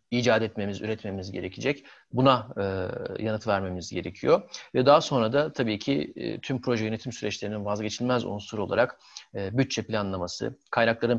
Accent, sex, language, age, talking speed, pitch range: native, male, Turkish, 40-59, 145 wpm, 110-135 Hz